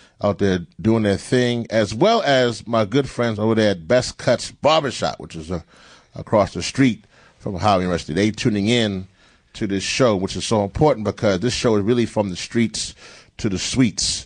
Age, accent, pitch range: 30-49, American, 95-125 Hz